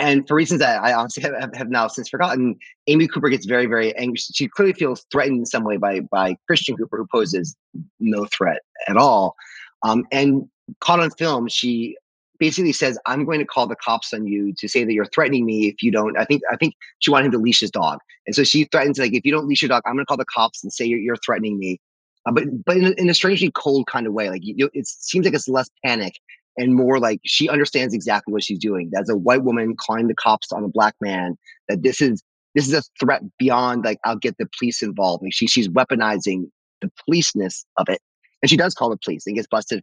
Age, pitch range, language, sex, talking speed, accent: 30-49, 105-145 Hz, English, male, 250 wpm, American